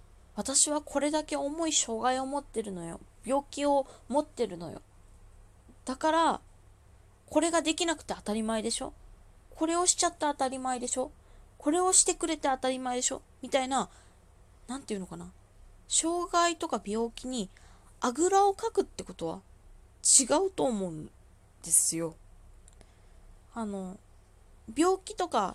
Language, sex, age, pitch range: Japanese, female, 20-39, 185-305 Hz